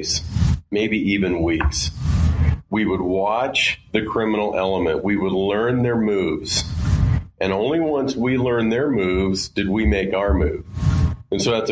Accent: American